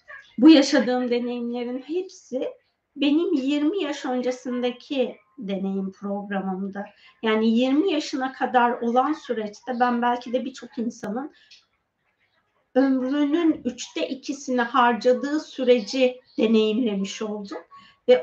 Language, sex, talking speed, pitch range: Turkish, female, 95 wpm, 225-295 Hz